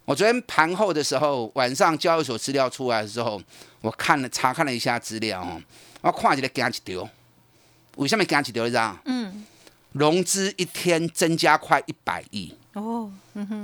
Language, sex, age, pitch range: Chinese, male, 30-49, 125-180 Hz